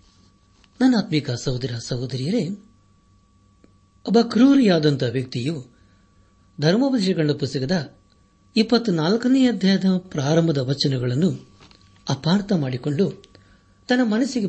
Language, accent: Kannada, native